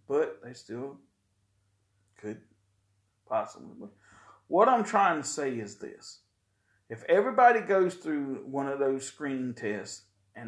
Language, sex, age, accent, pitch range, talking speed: English, male, 40-59, American, 100-140 Hz, 125 wpm